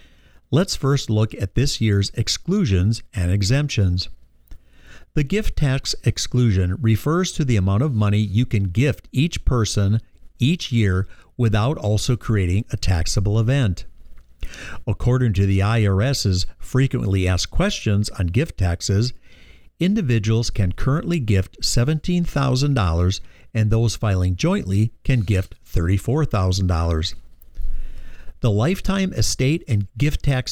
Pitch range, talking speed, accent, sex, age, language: 95-125 Hz, 120 wpm, American, male, 50-69, English